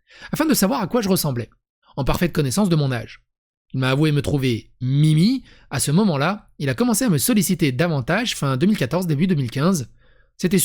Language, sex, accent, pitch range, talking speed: French, male, French, 135-200 Hz, 190 wpm